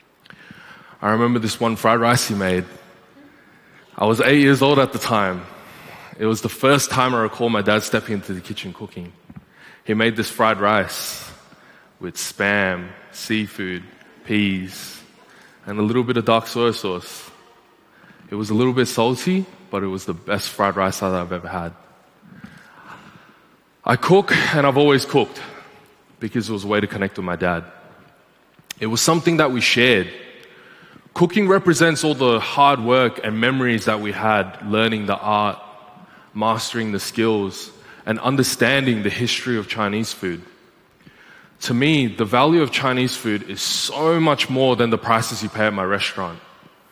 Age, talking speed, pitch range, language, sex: 20-39, 165 wpm, 100-125 Hz, English, male